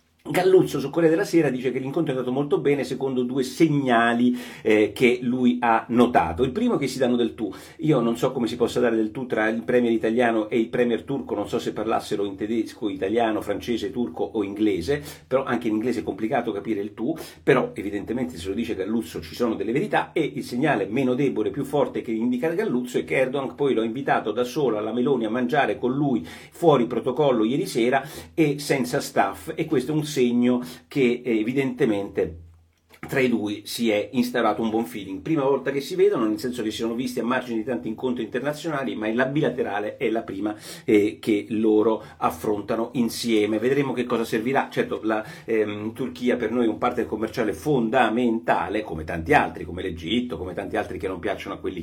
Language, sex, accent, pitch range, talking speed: Italian, male, native, 110-135 Hz, 205 wpm